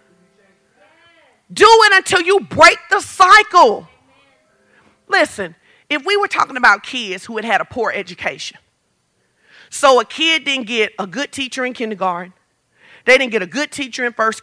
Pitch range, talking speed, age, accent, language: 260-385 Hz, 160 wpm, 40-59, American, English